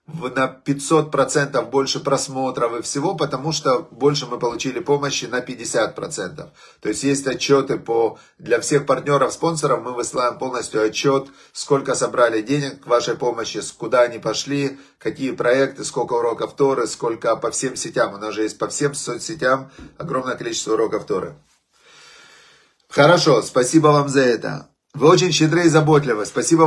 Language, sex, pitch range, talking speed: Russian, male, 125-155 Hz, 150 wpm